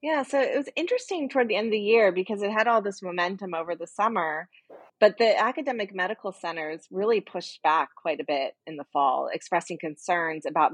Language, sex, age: English, female, 30-49